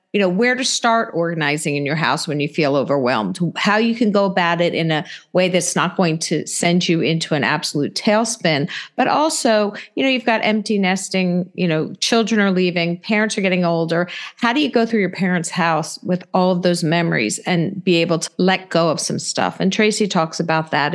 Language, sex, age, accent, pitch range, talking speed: English, female, 50-69, American, 170-215 Hz, 220 wpm